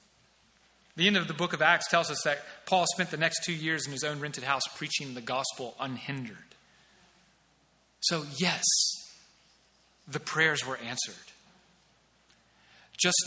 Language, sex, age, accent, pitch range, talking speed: English, male, 30-49, American, 140-190 Hz, 145 wpm